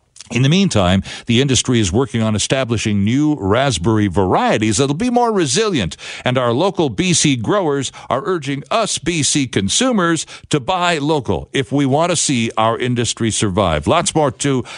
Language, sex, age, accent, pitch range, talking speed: English, male, 60-79, American, 115-175 Hz, 160 wpm